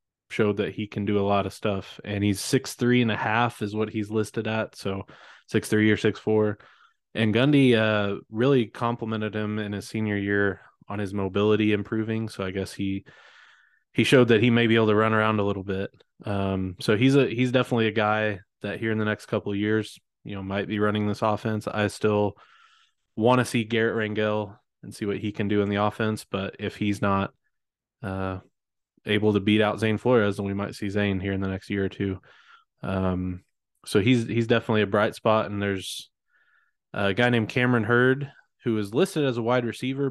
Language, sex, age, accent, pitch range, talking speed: English, male, 20-39, American, 100-115 Hz, 210 wpm